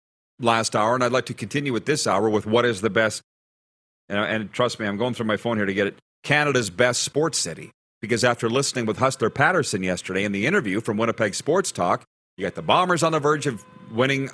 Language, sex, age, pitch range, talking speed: English, male, 40-59, 115-160 Hz, 230 wpm